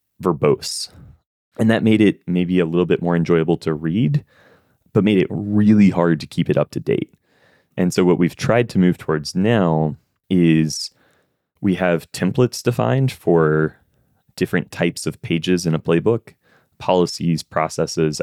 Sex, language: male, English